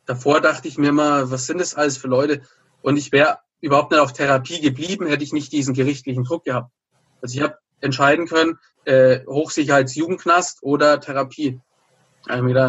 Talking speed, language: 170 wpm, German